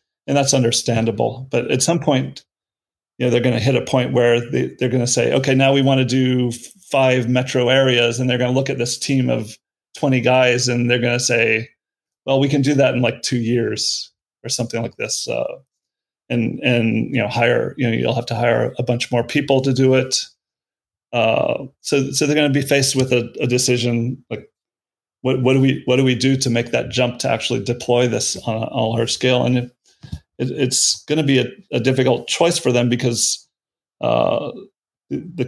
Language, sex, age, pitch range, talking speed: English, male, 40-59, 120-135 Hz, 215 wpm